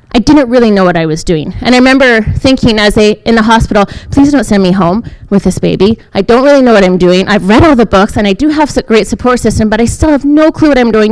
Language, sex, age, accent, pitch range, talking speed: English, female, 20-39, American, 210-255 Hz, 285 wpm